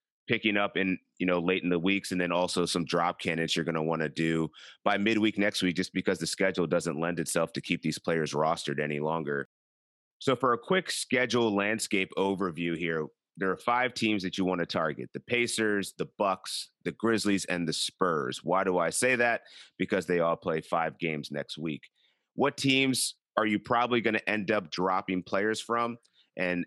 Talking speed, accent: 200 wpm, American